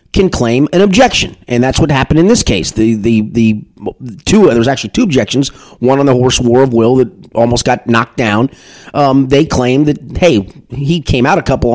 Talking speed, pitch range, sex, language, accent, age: 210 wpm, 125-160 Hz, male, English, American, 30-49